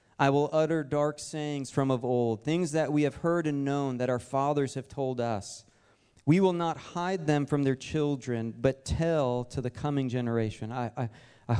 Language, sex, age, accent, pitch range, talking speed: English, male, 40-59, American, 120-145 Hz, 190 wpm